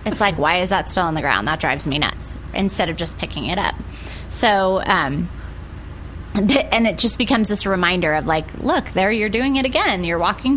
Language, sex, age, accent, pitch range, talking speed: English, female, 30-49, American, 165-220 Hz, 210 wpm